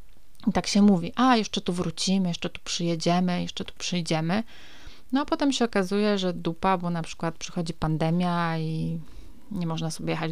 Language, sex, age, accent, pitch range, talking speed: Polish, female, 30-49, native, 165-195 Hz, 180 wpm